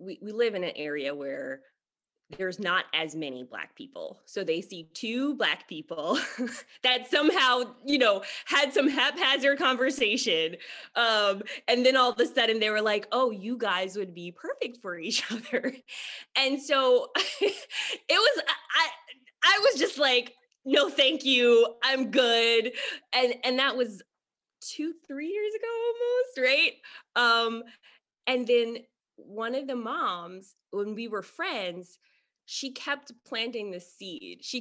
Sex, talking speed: female, 150 wpm